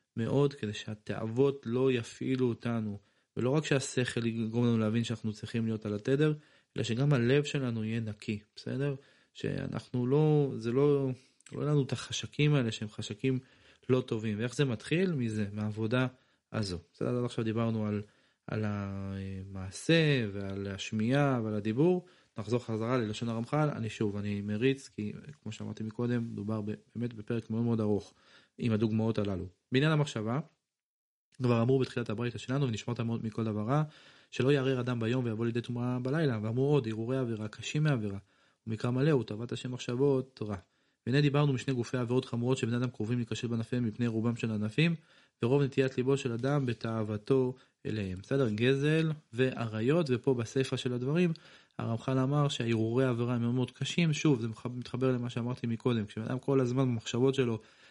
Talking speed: 130 wpm